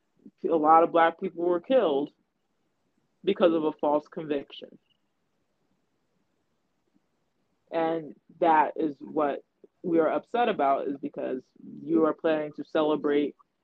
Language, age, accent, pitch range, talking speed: English, 20-39, American, 155-195 Hz, 120 wpm